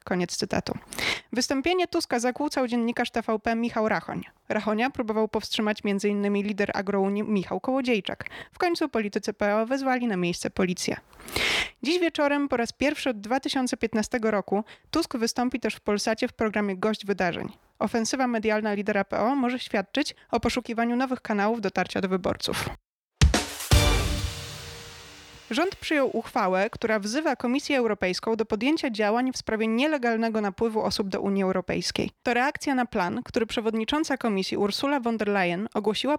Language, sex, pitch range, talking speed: Polish, female, 210-260 Hz, 140 wpm